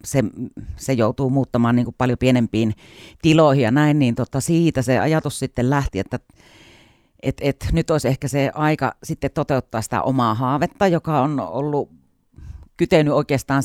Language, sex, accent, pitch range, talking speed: Finnish, female, native, 125-170 Hz, 155 wpm